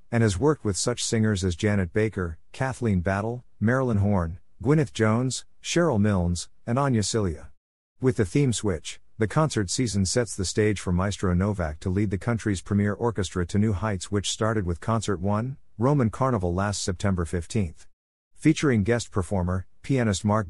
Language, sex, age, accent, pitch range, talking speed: English, male, 50-69, American, 90-115 Hz, 165 wpm